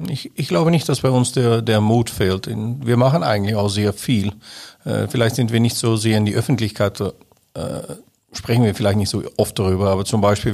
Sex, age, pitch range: male, 50-69, 100-115 Hz